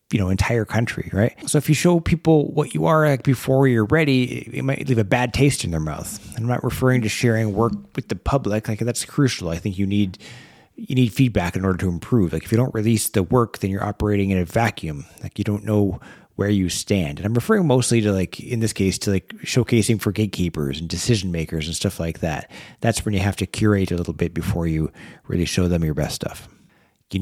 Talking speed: 240 wpm